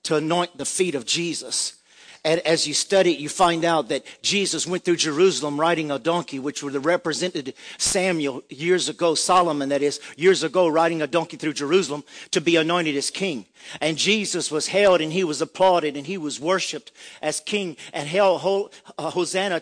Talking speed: 185 wpm